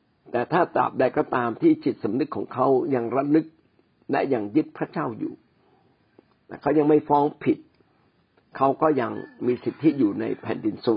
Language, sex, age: Thai, male, 60-79